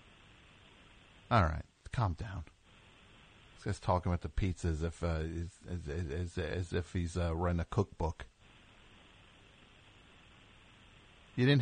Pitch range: 90-110 Hz